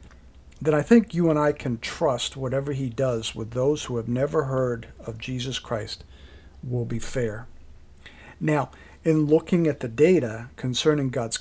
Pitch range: 85-145 Hz